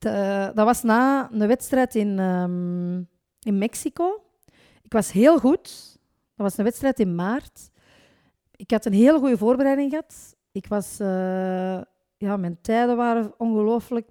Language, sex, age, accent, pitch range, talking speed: Dutch, female, 40-59, Dutch, 195-250 Hz, 130 wpm